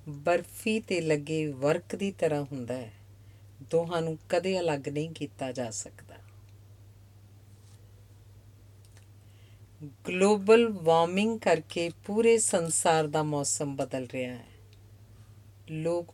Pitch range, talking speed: 100-160 Hz, 100 wpm